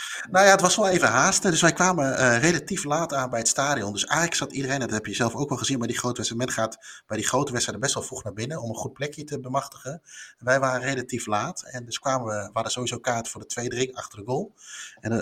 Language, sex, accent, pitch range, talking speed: Dutch, male, Dutch, 115-145 Hz, 270 wpm